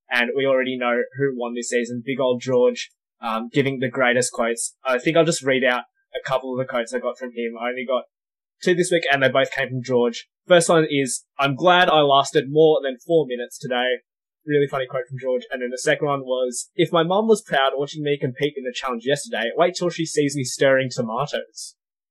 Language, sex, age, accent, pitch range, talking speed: English, male, 10-29, Australian, 125-165 Hz, 230 wpm